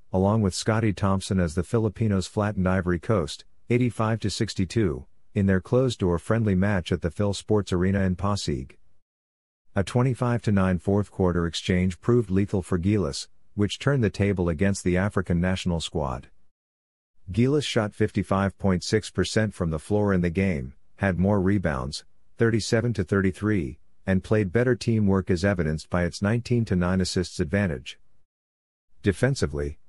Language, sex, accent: English, male, American